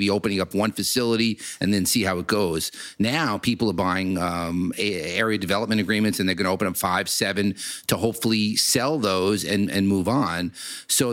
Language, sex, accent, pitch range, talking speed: English, male, American, 100-125 Hz, 190 wpm